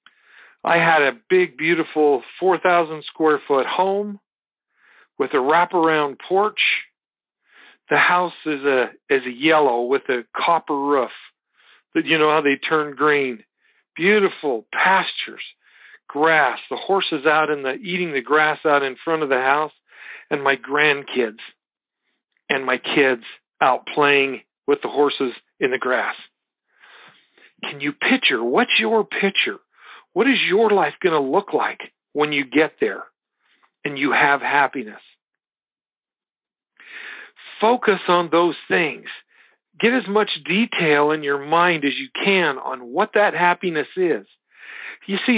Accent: American